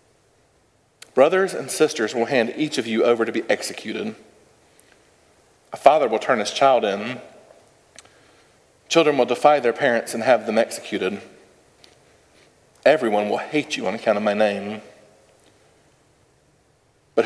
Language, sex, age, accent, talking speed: English, male, 40-59, American, 130 wpm